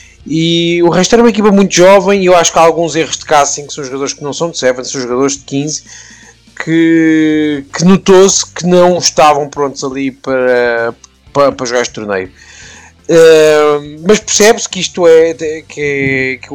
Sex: male